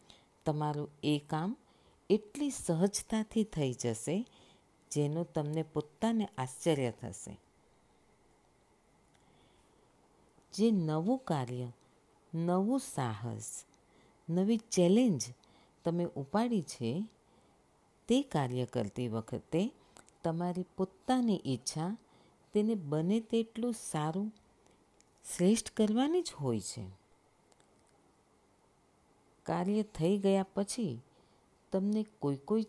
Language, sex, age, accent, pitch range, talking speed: Gujarati, female, 50-69, native, 135-215 Hz, 75 wpm